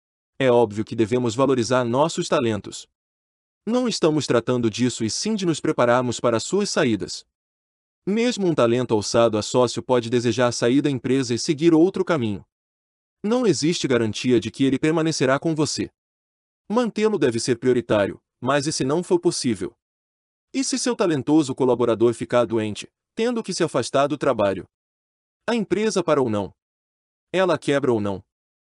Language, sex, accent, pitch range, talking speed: Portuguese, male, Brazilian, 110-160 Hz, 155 wpm